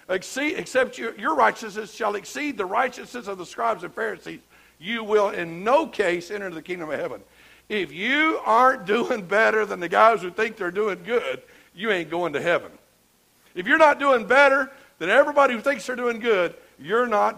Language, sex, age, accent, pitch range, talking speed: English, male, 60-79, American, 220-290 Hz, 185 wpm